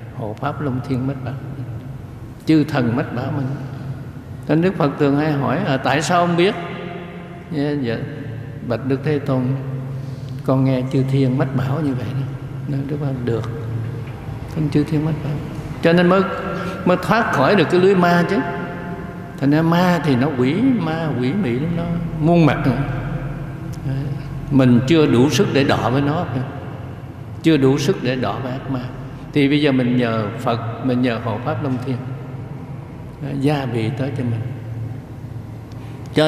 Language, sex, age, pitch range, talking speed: Vietnamese, male, 60-79, 125-155 Hz, 165 wpm